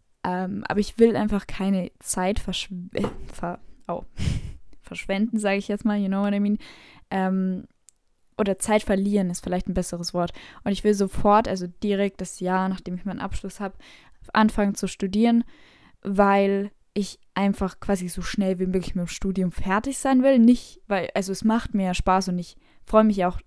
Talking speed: 185 wpm